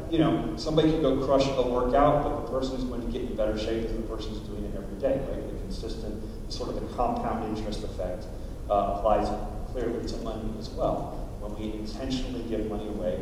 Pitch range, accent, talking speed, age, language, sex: 100-125 Hz, American, 215 wpm, 30-49, English, male